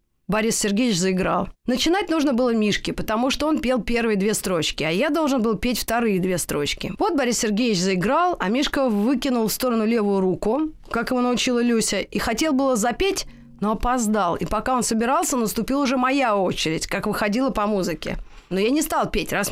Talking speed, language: 190 wpm, Russian